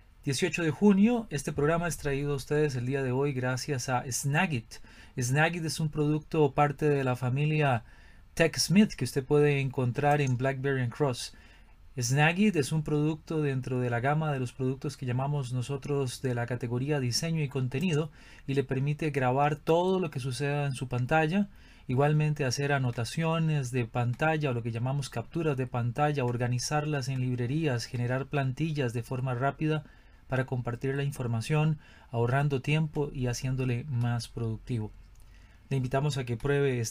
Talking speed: 160 wpm